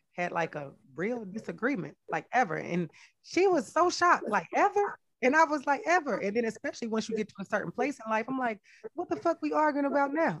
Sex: female